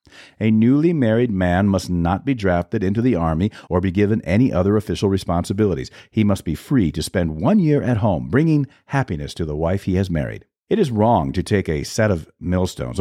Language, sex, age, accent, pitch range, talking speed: English, male, 50-69, American, 95-130 Hz, 210 wpm